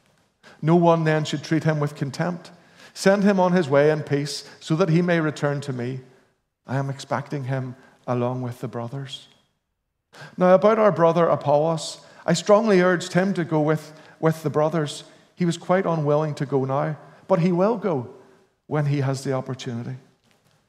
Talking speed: 175 wpm